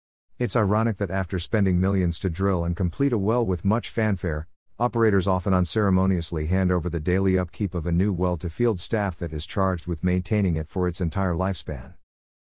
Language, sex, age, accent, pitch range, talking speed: English, male, 50-69, American, 85-110 Hz, 185 wpm